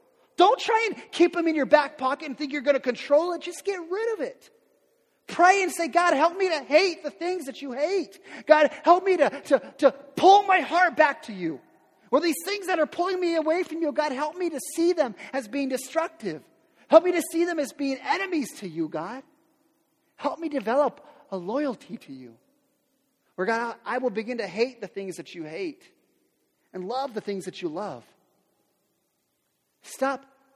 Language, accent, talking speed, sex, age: English, American, 205 wpm, male, 30-49